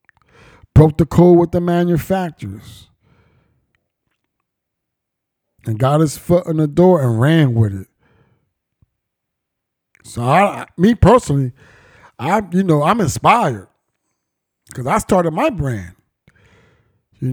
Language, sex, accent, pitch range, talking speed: English, male, American, 145-205 Hz, 115 wpm